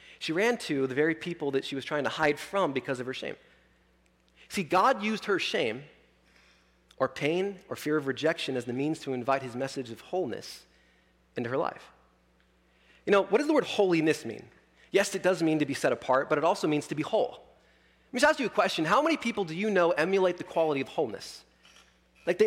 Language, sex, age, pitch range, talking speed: English, male, 30-49, 115-175 Hz, 220 wpm